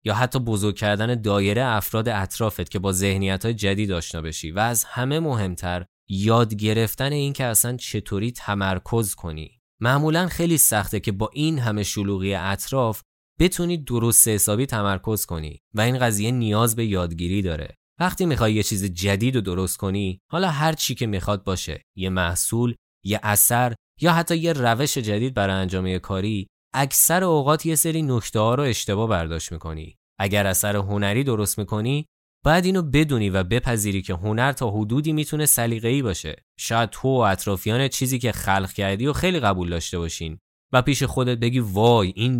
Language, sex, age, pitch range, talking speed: Persian, male, 20-39, 95-125 Hz, 165 wpm